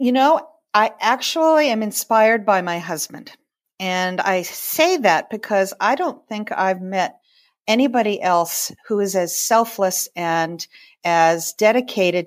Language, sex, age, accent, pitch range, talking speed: English, female, 50-69, American, 175-235 Hz, 135 wpm